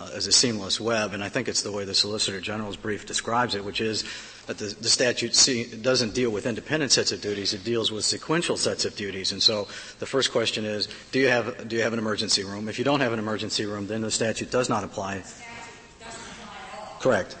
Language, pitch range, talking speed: English, 110-140 Hz, 230 wpm